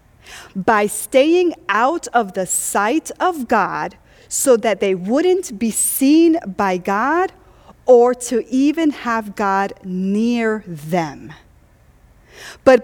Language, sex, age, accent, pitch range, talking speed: English, female, 40-59, American, 185-255 Hz, 110 wpm